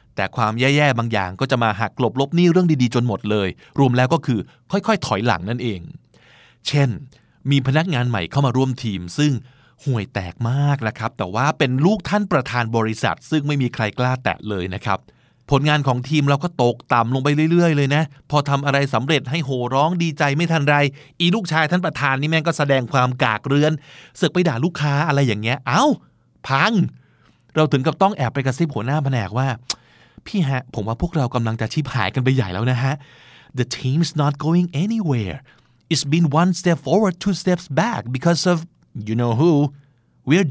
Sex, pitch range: male, 115-155 Hz